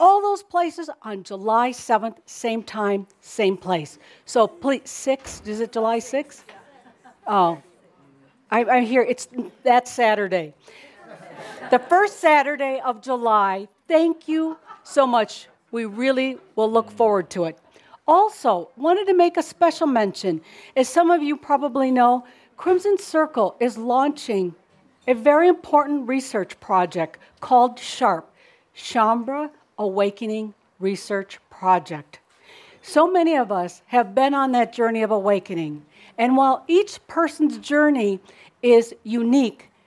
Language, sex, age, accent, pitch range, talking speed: English, female, 60-79, American, 210-290 Hz, 130 wpm